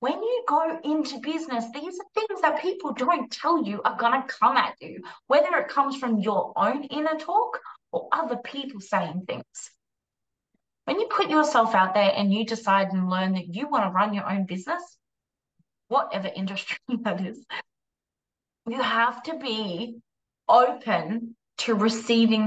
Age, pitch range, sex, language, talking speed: 20-39, 200-280 Hz, female, English, 165 wpm